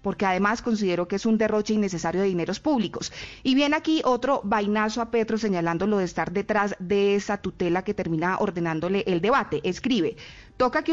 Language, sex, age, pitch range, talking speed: Spanish, female, 30-49, 190-235 Hz, 185 wpm